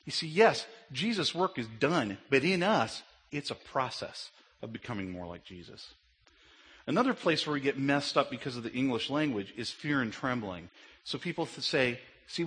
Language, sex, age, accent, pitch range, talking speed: English, male, 40-59, American, 100-145 Hz, 185 wpm